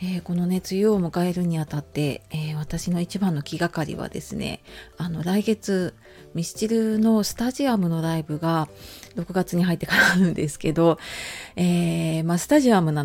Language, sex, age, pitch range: Japanese, female, 30-49, 160-210 Hz